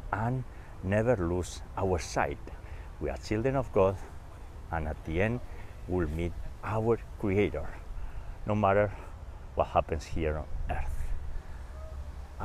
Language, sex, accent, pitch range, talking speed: English, male, Spanish, 75-100 Hz, 120 wpm